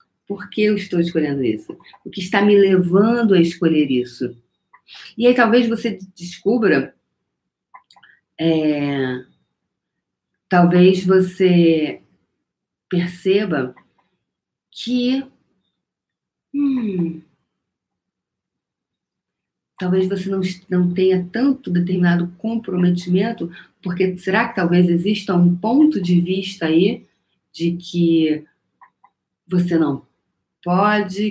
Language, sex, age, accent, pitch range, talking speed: Portuguese, female, 40-59, Brazilian, 165-200 Hz, 90 wpm